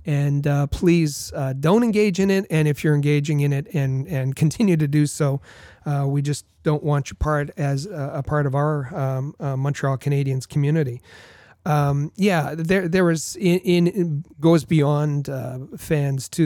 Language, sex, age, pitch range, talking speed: English, male, 40-59, 135-155 Hz, 185 wpm